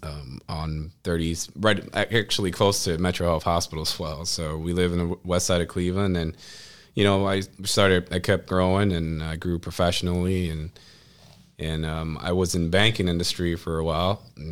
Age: 20-39